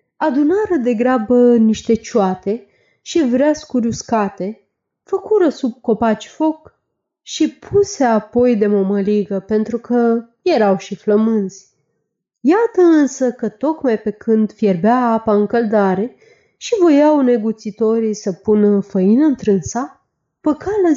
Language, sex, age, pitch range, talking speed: Romanian, female, 30-49, 210-300 Hz, 115 wpm